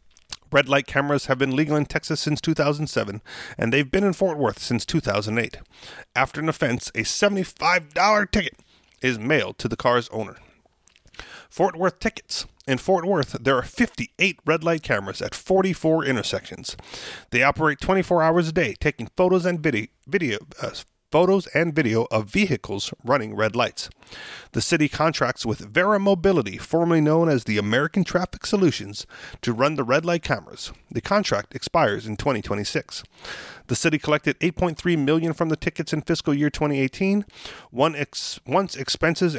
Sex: male